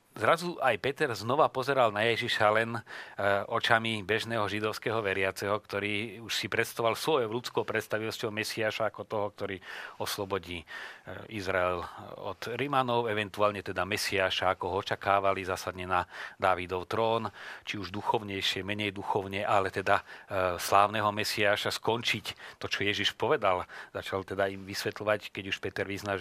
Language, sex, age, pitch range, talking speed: Slovak, male, 40-59, 95-110 Hz, 135 wpm